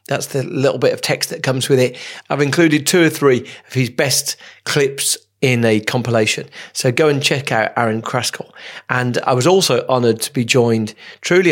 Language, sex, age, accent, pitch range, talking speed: English, male, 40-59, British, 120-150 Hz, 200 wpm